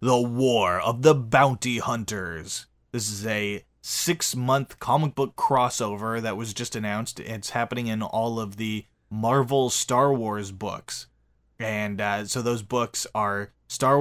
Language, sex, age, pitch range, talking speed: English, male, 20-39, 105-125 Hz, 145 wpm